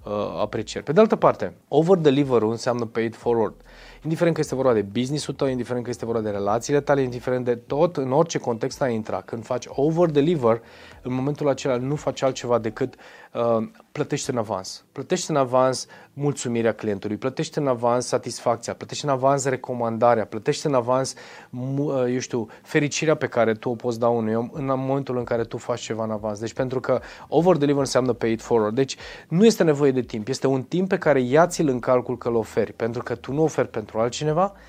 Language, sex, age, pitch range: Romanian, male, 30-49, 115-145 Hz